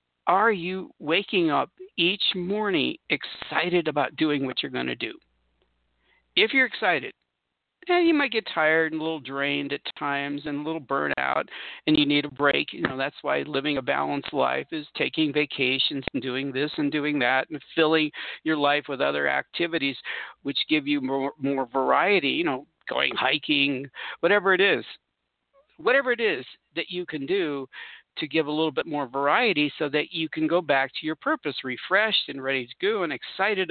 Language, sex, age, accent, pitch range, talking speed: English, male, 50-69, American, 140-180 Hz, 185 wpm